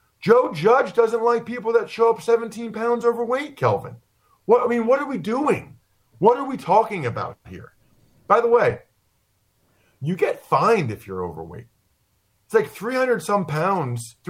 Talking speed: 160 wpm